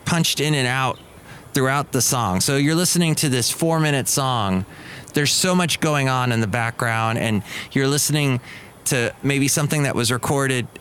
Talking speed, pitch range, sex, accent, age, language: 180 wpm, 110-140 Hz, male, American, 30-49, English